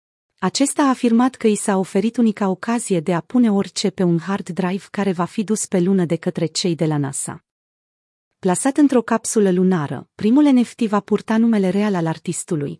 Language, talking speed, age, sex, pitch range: Romanian, 190 wpm, 30-49, female, 175-220 Hz